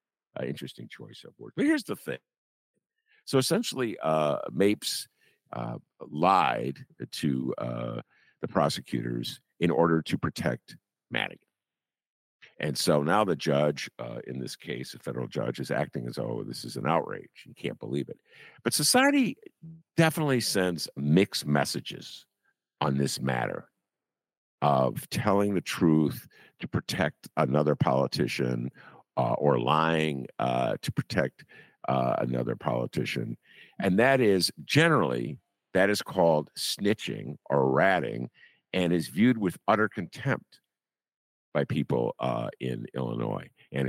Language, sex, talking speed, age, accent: English, male, 130 wpm, 50-69, American